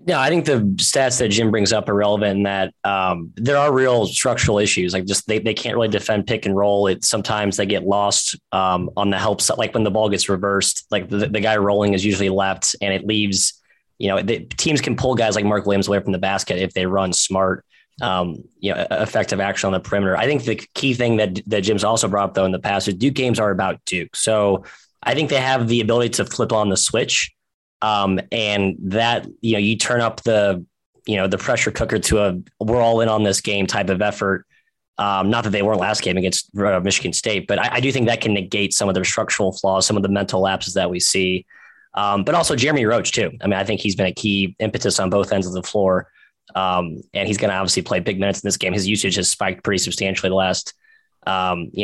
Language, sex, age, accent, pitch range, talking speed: English, male, 20-39, American, 95-110 Hz, 250 wpm